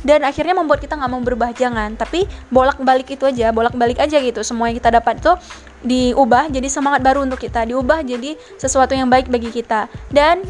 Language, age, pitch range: Indonesian, 20-39, 250-295 Hz